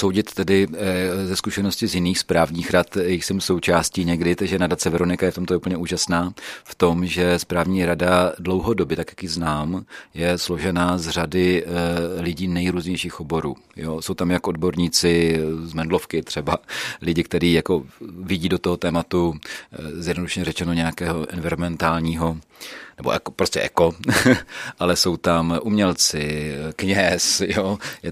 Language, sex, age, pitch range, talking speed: Czech, male, 40-59, 85-95 Hz, 145 wpm